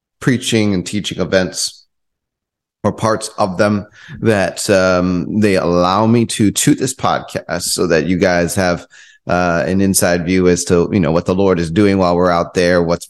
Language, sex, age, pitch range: English, male, 30-49, 90-105 Hz